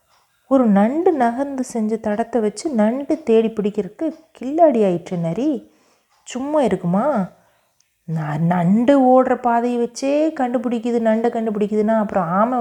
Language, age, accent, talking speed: Tamil, 30-49, native, 110 wpm